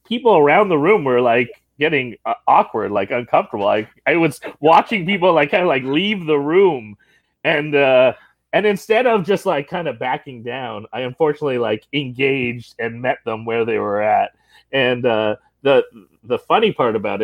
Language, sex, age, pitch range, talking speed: English, male, 30-49, 110-185 Hz, 180 wpm